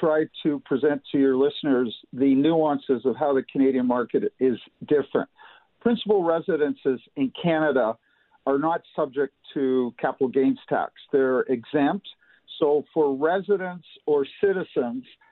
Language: English